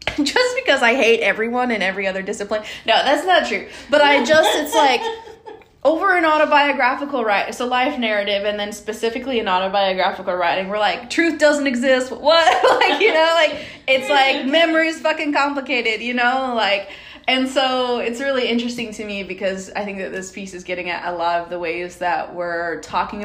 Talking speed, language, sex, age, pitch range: 190 wpm, English, female, 20-39, 180-245 Hz